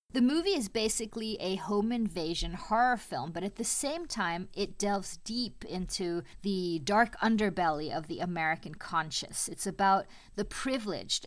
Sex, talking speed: female, 155 wpm